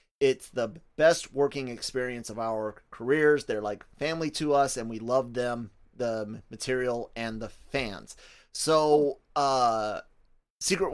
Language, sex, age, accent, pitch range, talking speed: English, male, 30-49, American, 110-130 Hz, 135 wpm